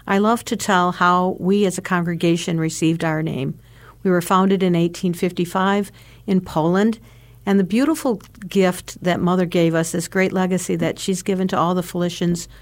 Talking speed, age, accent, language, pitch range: 175 wpm, 50-69, American, English, 165-195 Hz